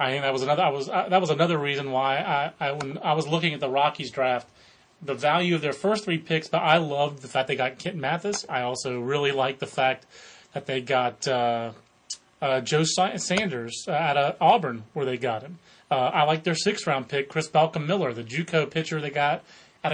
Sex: male